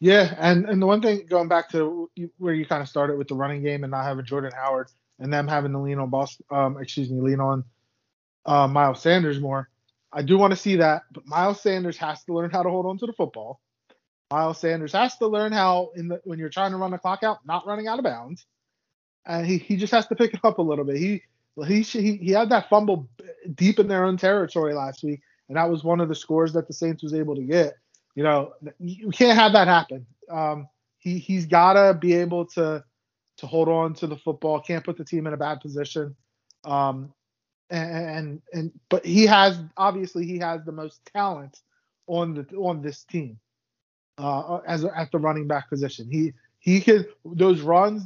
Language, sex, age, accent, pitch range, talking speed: English, male, 20-39, American, 145-180 Hz, 220 wpm